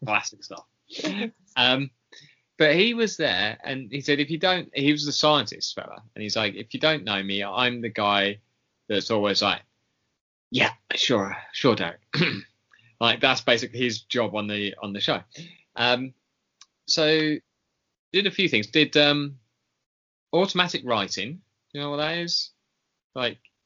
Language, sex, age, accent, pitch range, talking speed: English, male, 20-39, British, 100-130 Hz, 160 wpm